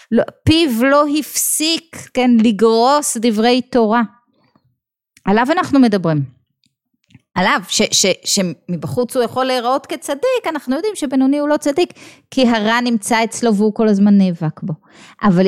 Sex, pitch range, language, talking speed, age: female, 195-260 Hz, Hebrew, 140 wpm, 20-39